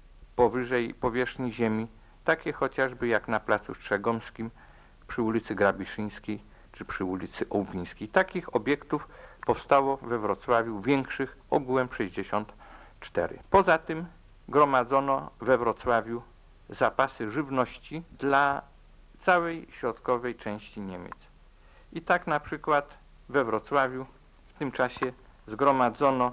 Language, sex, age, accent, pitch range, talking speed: Polish, male, 50-69, native, 110-140 Hz, 105 wpm